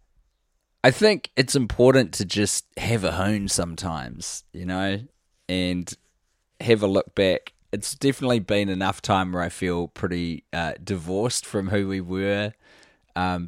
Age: 20-39